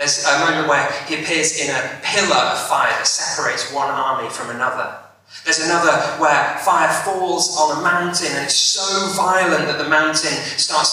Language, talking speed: English, 180 wpm